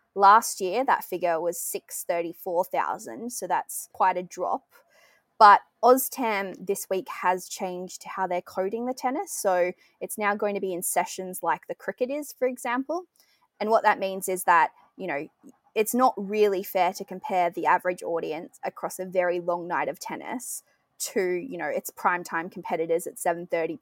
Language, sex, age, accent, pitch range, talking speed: English, female, 20-39, Australian, 175-240 Hz, 180 wpm